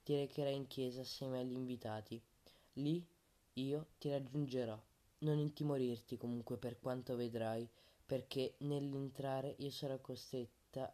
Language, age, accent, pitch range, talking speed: Italian, 20-39, native, 120-140 Hz, 120 wpm